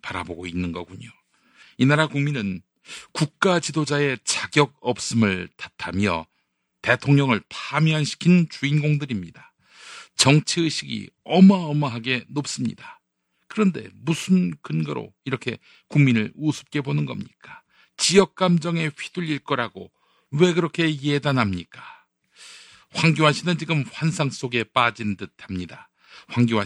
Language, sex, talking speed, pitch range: English, male, 90 wpm, 105-150 Hz